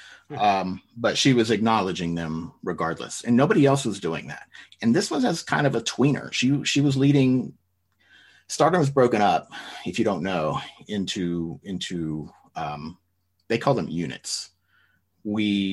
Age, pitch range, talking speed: 30-49, 90-115 Hz, 155 wpm